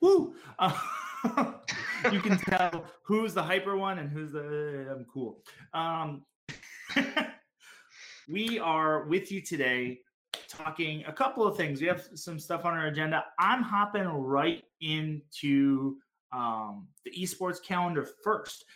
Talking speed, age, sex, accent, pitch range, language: 135 wpm, 30-49, male, American, 130-170 Hz, English